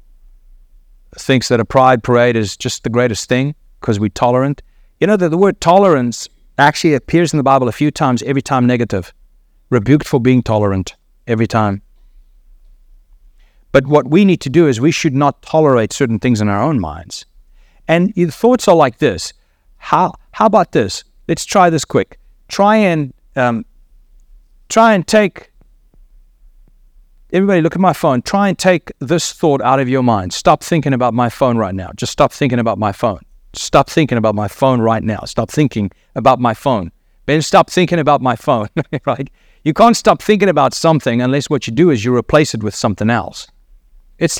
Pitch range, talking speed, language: 115-160 Hz, 185 wpm, English